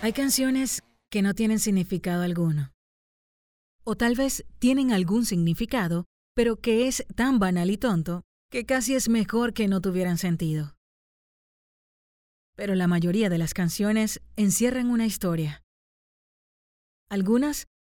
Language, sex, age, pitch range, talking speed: Spanish, female, 30-49, 175-225 Hz, 125 wpm